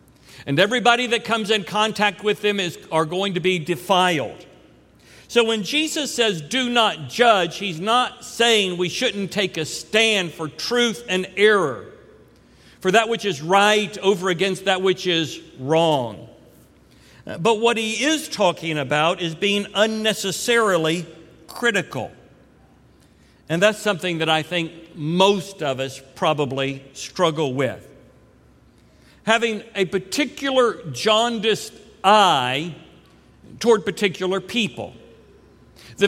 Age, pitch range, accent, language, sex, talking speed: 60-79, 160-220 Hz, American, English, male, 125 wpm